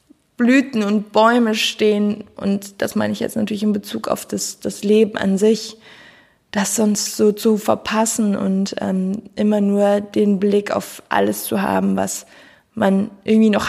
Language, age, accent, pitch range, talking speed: German, 20-39, German, 200-225 Hz, 160 wpm